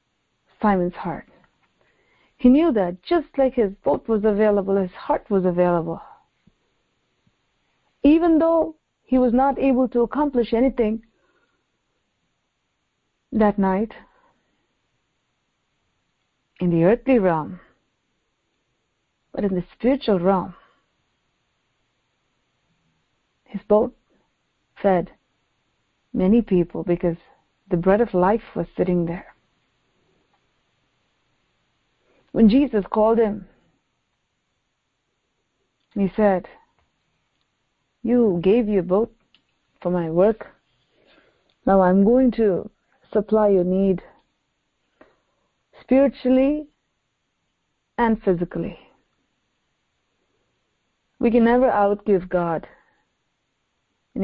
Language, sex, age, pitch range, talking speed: English, female, 40-59, 185-240 Hz, 85 wpm